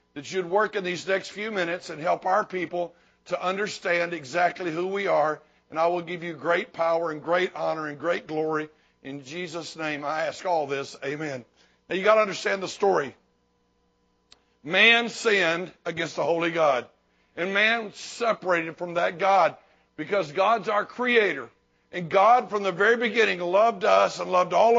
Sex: male